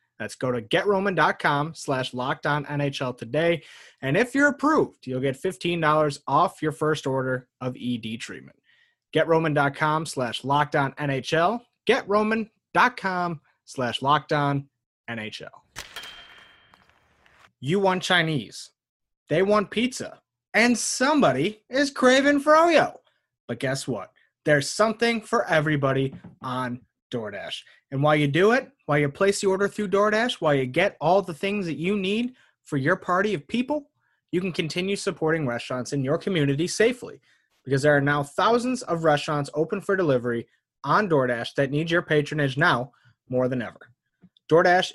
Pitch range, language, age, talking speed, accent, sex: 140-195 Hz, English, 30-49, 140 wpm, American, male